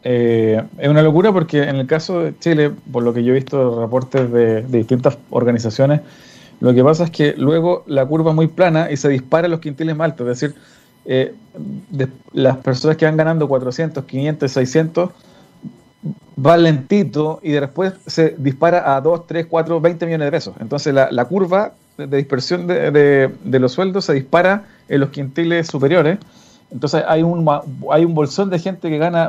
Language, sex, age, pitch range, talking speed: Spanish, male, 40-59, 130-170 Hz, 190 wpm